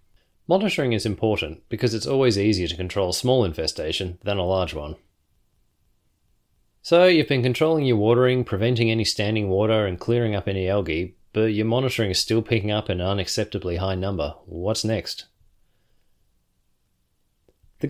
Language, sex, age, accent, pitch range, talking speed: English, male, 30-49, Australian, 95-120 Hz, 150 wpm